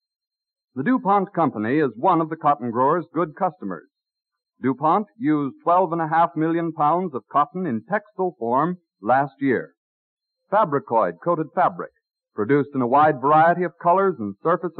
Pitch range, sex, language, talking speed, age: 145-195 Hz, male, English, 140 wpm, 50-69